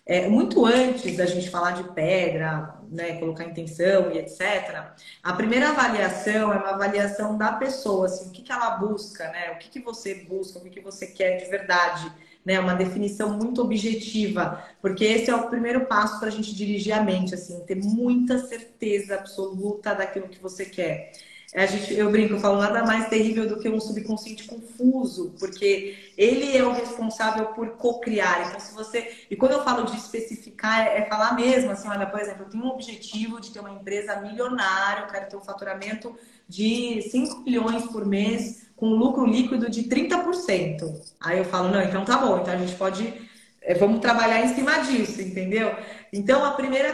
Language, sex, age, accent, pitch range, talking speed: Portuguese, female, 20-39, Brazilian, 195-245 Hz, 180 wpm